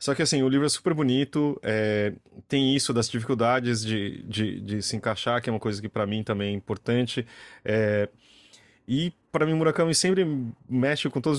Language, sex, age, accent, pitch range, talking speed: Portuguese, male, 20-39, Brazilian, 110-130 Hz, 195 wpm